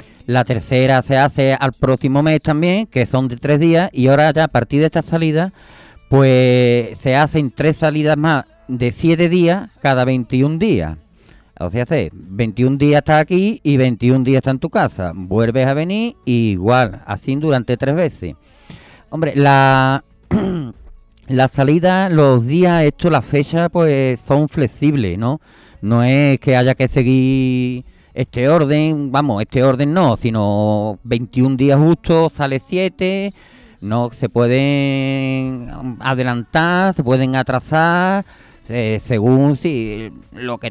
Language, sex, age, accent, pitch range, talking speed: Spanish, male, 40-59, Spanish, 125-155 Hz, 145 wpm